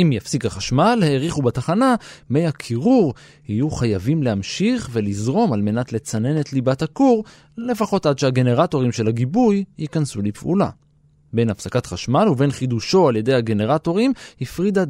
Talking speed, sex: 135 wpm, male